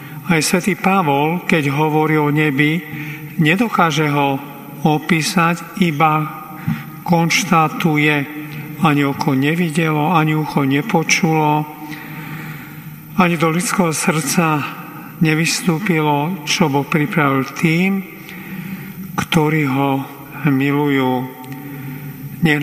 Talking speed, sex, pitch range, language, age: 80 wpm, male, 145-165 Hz, Slovak, 50-69